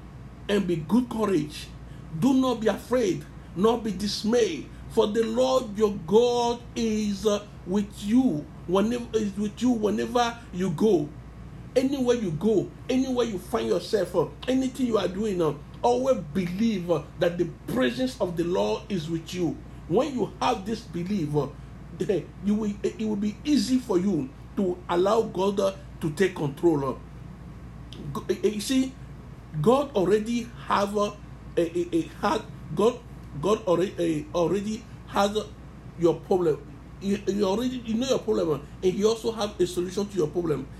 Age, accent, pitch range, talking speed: 50-69, Nigerian, 175-220 Hz, 160 wpm